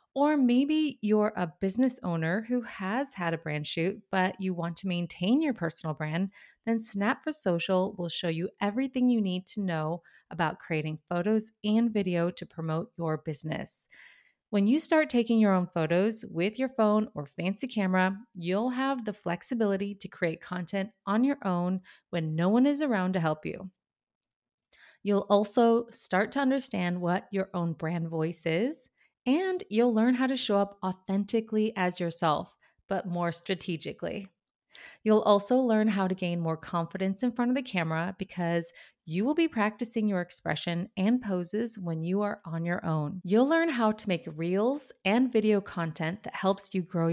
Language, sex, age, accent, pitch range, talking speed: English, female, 30-49, American, 175-225 Hz, 175 wpm